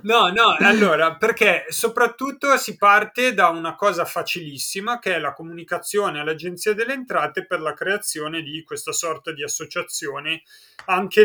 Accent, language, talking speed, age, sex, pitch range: native, Italian, 145 wpm, 30-49, male, 150-210 Hz